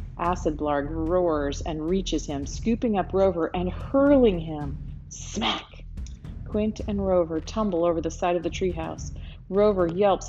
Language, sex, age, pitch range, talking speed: English, female, 40-59, 160-205 Hz, 145 wpm